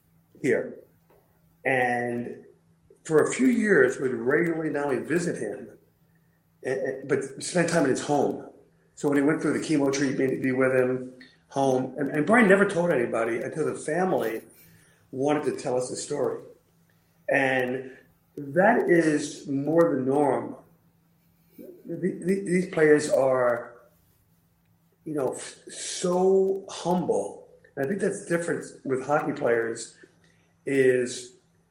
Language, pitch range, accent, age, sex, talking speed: English, 125-165 Hz, American, 40-59, male, 125 wpm